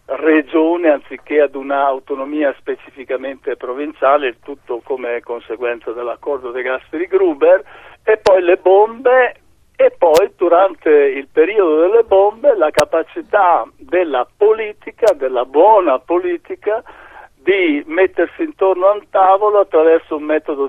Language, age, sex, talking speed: Italian, 60-79, male, 115 wpm